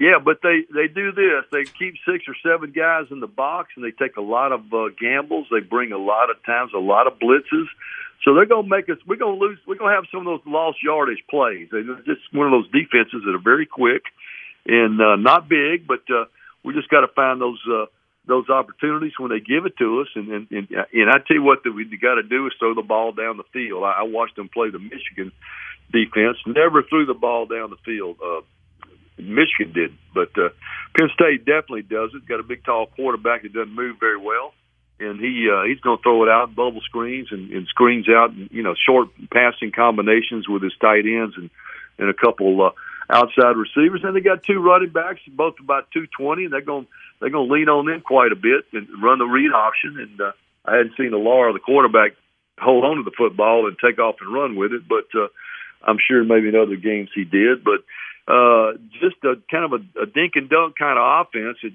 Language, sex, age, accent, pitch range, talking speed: English, male, 60-79, American, 110-165 Hz, 240 wpm